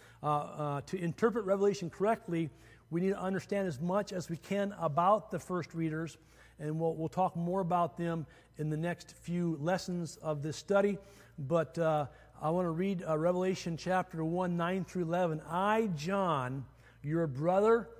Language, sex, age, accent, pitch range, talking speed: English, male, 50-69, American, 155-195 Hz, 165 wpm